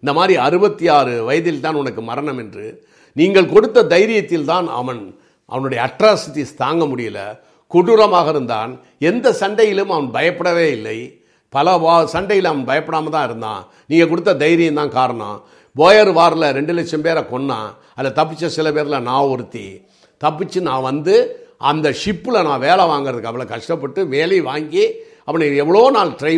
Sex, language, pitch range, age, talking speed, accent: male, Tamil, 130-210 Hz, 50-69, 145 wpm, native